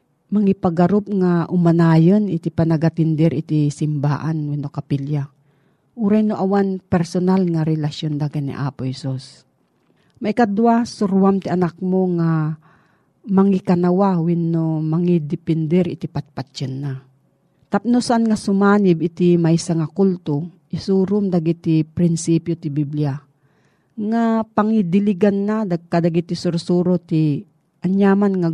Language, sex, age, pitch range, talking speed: Filipino, female, 40-59, 155-195 Hz, 120 wpm